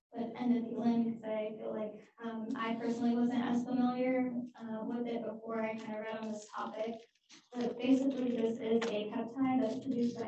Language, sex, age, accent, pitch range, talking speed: English, female, 10-29, American, 220-245 Hz, 175 wpm